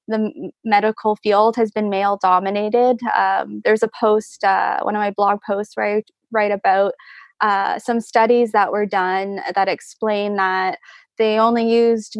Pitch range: 200-230 Hz